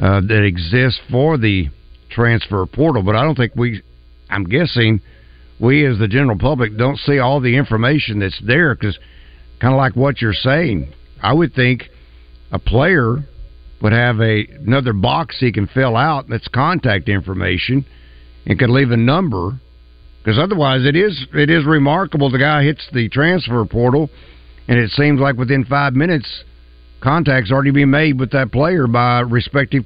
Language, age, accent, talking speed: English, 60-79, American, 175 wpm